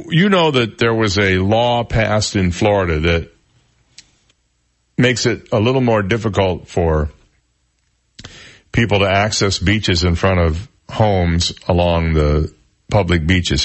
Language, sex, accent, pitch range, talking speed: English, male, American, 85-105 Hz, 130 wpm